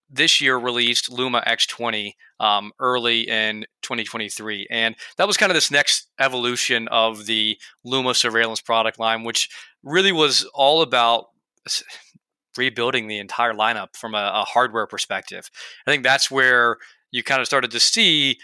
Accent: American